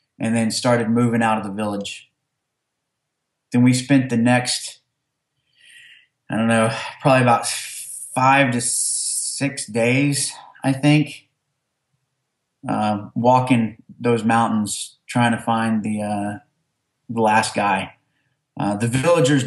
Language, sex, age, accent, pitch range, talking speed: English, male, 20-39, American, 115-135 Hz, 120 wpm